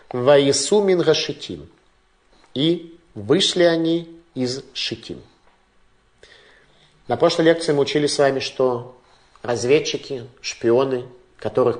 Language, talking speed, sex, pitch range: Russian, 90 wpm, male, 125-165 Hz